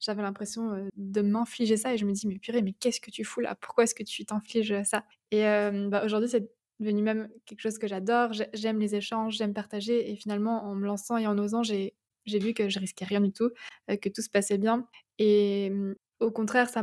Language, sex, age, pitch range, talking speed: French, female, 20-39, 205-230 Hz, 230 wpm